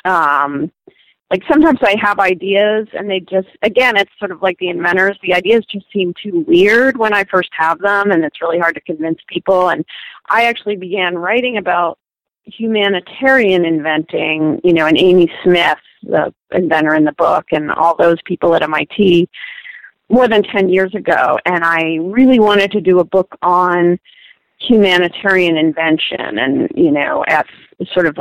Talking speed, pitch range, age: 170 wpm, 170-210 Hz, 40-59